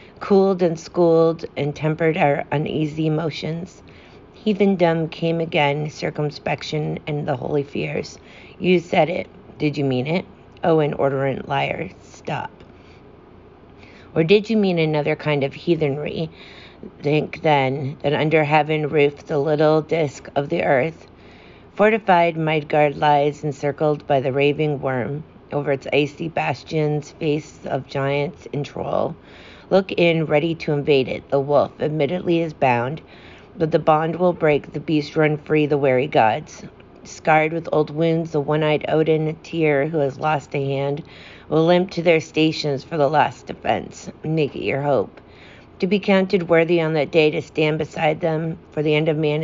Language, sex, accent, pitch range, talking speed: English, female, American, 145-165 Hz, 155 wpm